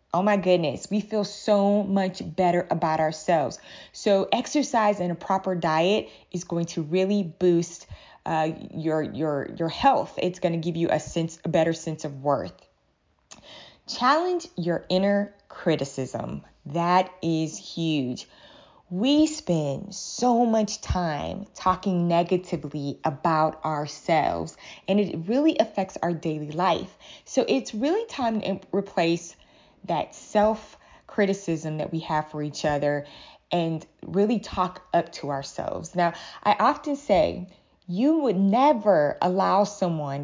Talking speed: 135 wpm